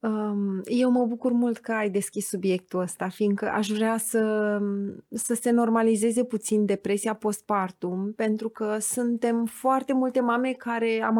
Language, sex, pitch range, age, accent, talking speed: Romanian, female, 210-255 Hz, 30-49, native, 145 wpm